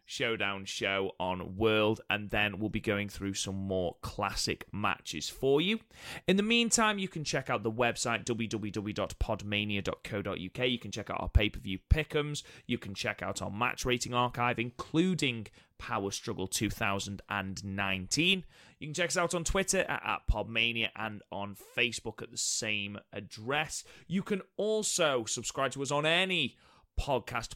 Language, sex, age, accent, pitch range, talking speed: English, male, 20-39, British, 105-155 Hz, 150 wpm